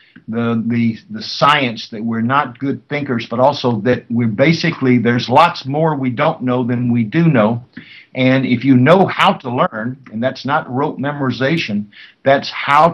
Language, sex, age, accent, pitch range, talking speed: English, male, 60-79, American, 125-155 Hz, 180 wpm